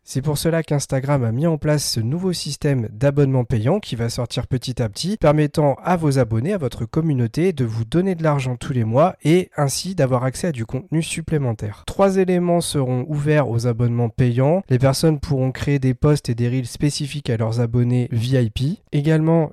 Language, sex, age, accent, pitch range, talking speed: French, male, 40-59, French, 125-155 Hz, 195 wpm